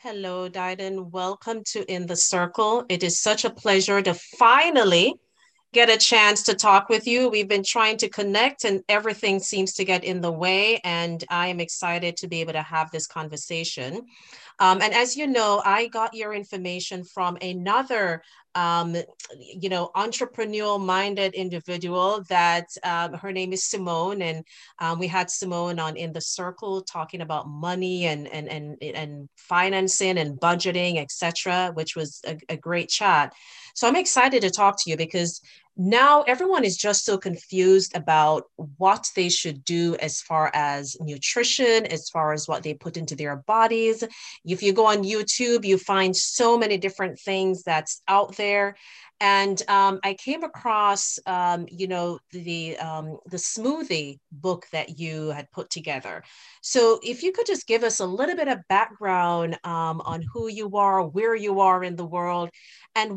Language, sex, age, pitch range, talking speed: English, female, 30-49, 170-210 Hz, 170 wpm